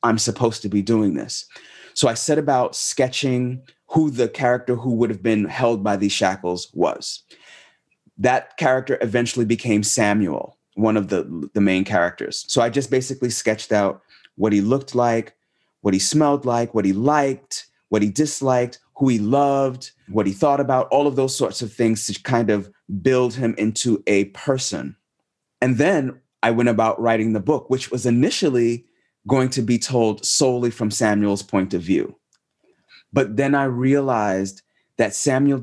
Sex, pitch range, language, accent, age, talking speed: male, 110-135 Hz, English, American, 30-49, 170 wpm